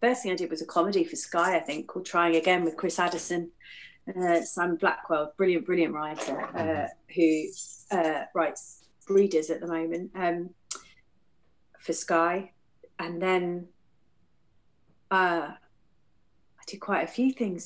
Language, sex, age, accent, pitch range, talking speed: English, female, 30-49, British, 160-190 Hz, 145 wpm